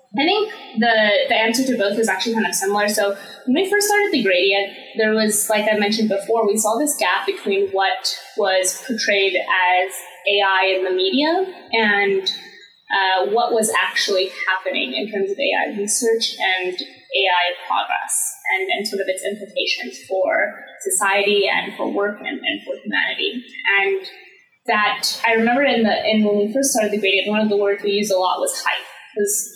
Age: 10-29